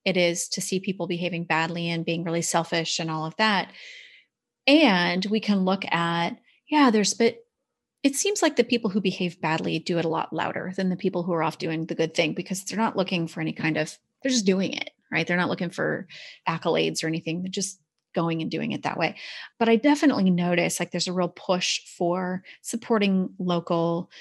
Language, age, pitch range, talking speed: English, 30-49, 170-215 Hz, 215 wpm